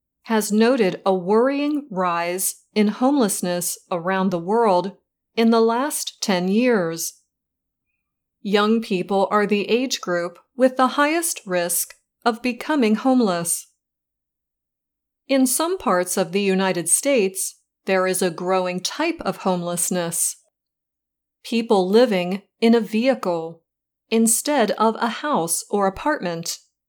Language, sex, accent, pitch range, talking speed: English, female, American, 180-235 Hz, 120 wpm